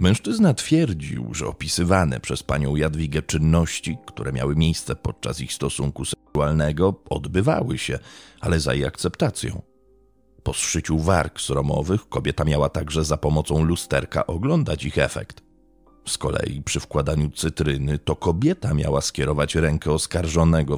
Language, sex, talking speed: Polish, male, 130 wpm